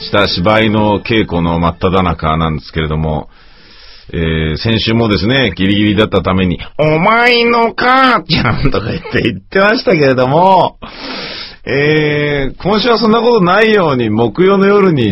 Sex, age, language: male, 40-59, Japanese